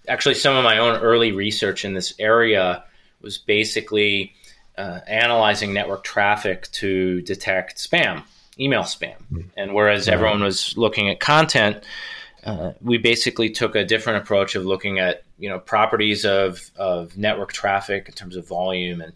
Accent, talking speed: American, 155 wpm